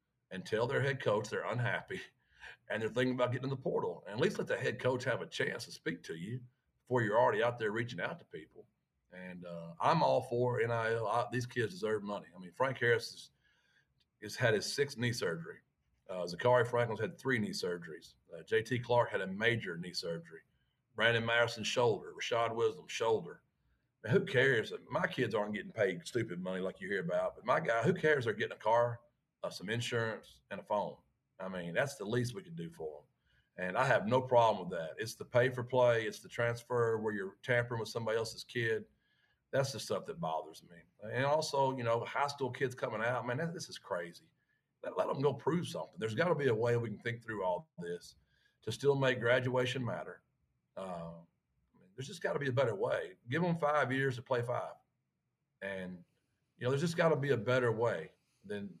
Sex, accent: male, American